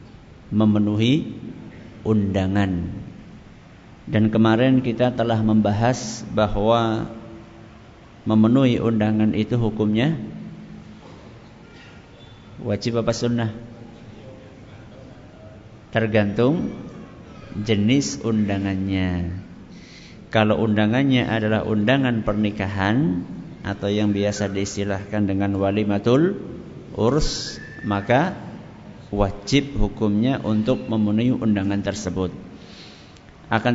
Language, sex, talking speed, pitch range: Malay, male, 70 wpm, 105-125 Hz